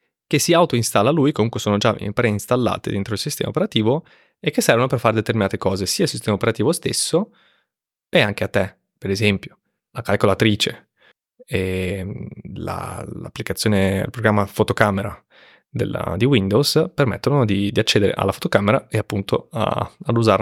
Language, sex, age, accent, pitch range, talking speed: Italian, male, 20-39, native, 100-130 Hz, 155 wpm